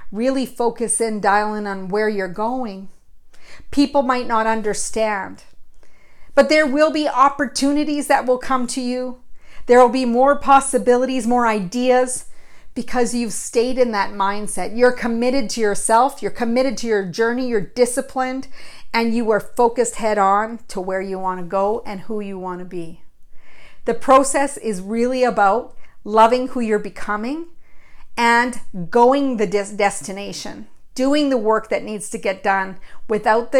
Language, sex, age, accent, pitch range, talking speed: English, female, 50-69, American, 205-255 Hz, 150 wpm